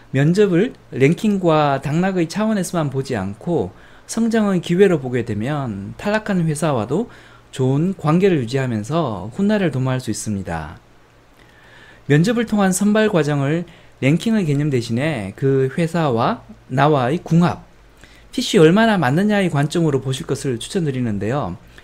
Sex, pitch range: male, 130-195 Hz